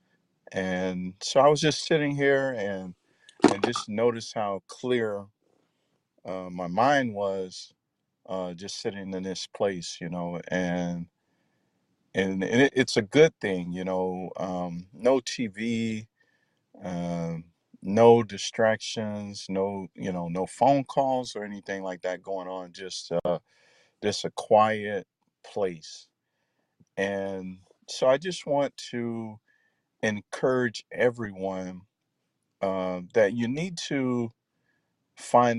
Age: 50-69